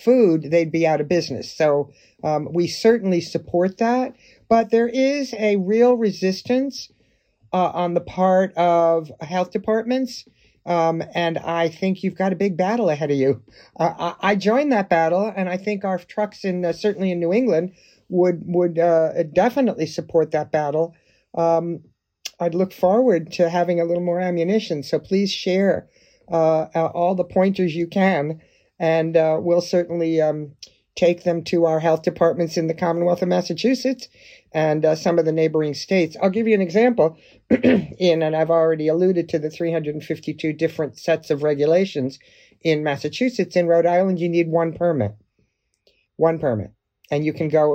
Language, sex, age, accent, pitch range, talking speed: English, male, 50-69, American, 155-185 Hz, 170 wpm